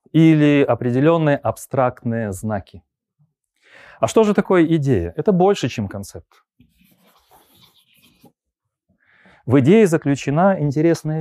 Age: 30-49